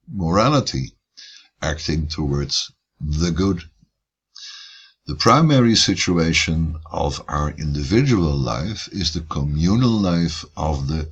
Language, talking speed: English, 95 wpm